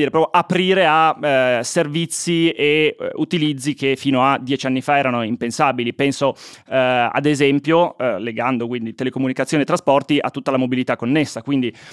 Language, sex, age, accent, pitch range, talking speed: Italian, male, 20-39, native, 125-150 Hz, 165 wpm